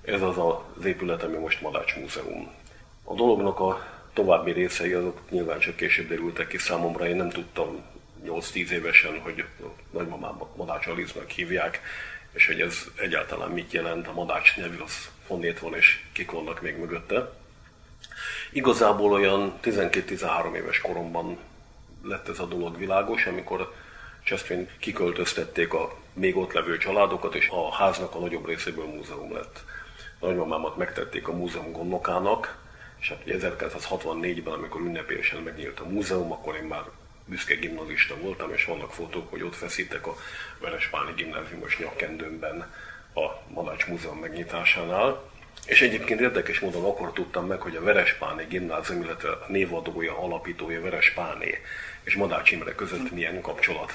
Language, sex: Hungarian, male